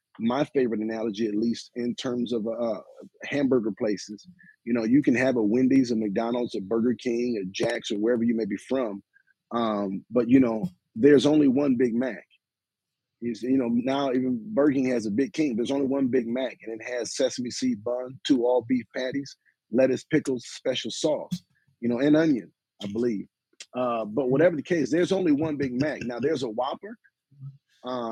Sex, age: male, 30-49